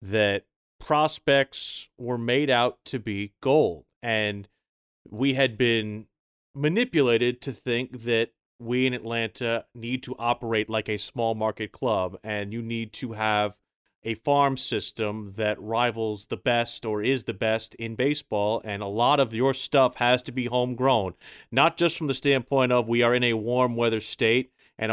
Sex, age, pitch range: male, 30-49, 110-130 Hz